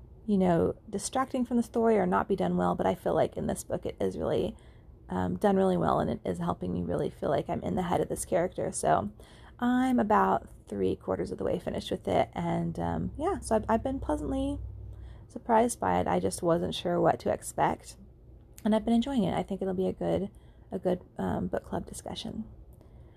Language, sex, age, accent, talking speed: English, female, 30-49, American, 220 wpm